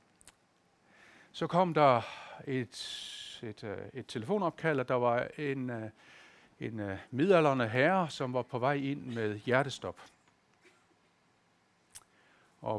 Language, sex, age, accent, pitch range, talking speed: Danish, male, 60-79, native, 110-155 Hz, 100 wpm